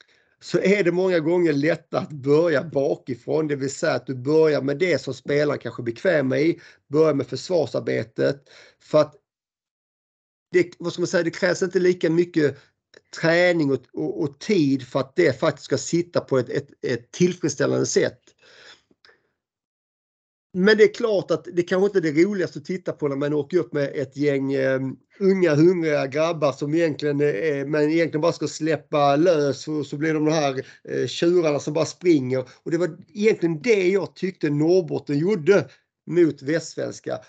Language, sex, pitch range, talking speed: Swedish, male, 140-175 Hz, 175 wpm